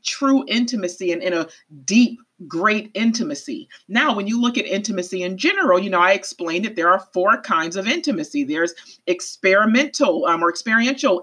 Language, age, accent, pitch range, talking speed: English, 40-59, American, 180-265 Hz, 170 wpm